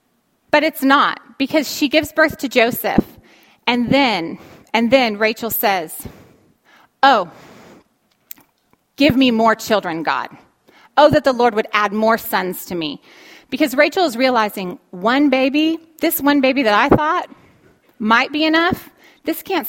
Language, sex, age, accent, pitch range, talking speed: English, female, 30-49, American, 220-300 Hz, 145 wpm